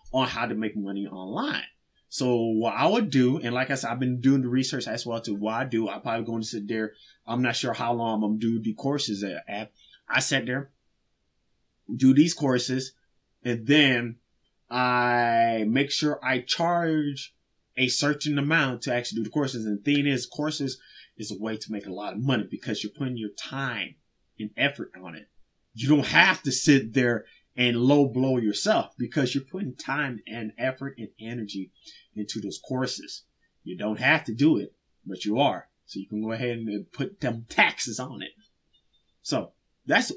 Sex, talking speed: male, 195 wpm